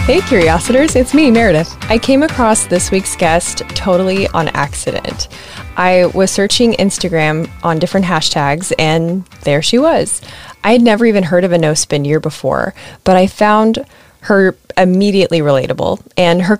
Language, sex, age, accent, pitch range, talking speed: English, female, 20-39, American, 160-210 Hz, 155 wpm